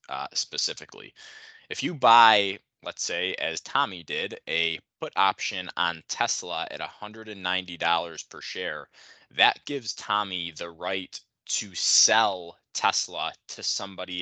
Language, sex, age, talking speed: English, male, 20-39, 140 wpm